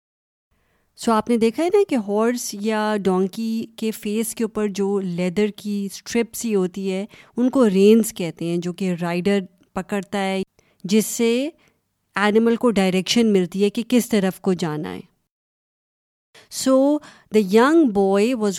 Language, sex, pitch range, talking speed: Urdu, female, 185-240 Hz, 160 wpm